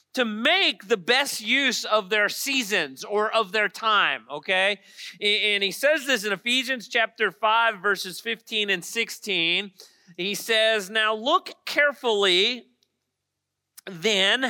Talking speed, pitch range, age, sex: 130 wpm, 200-260 Hz, 40-59, male